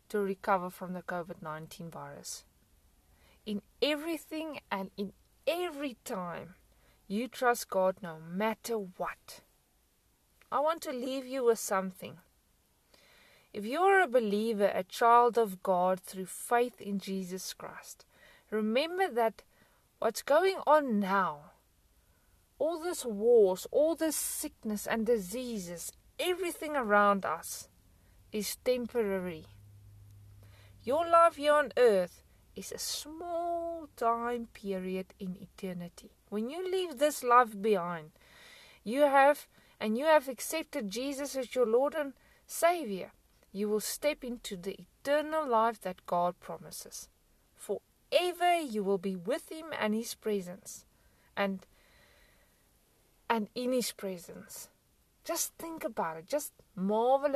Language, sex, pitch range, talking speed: English, female, 190-290 Hz, 125 wpm